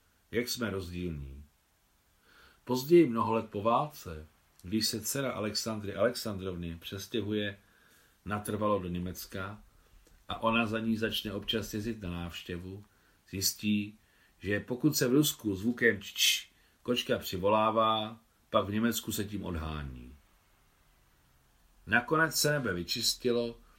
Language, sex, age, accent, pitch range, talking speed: Czech, male, 40-59, native, 85-115 Hz, 115 wpm